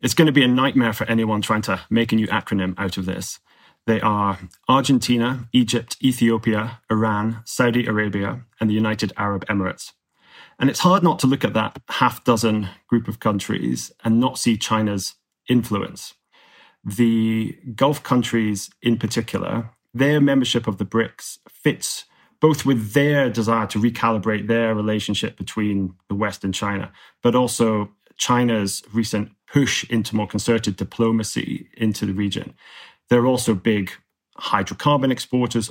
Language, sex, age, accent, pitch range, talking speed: English, male, 30-49, British, 105-120 Hz, 150 wpm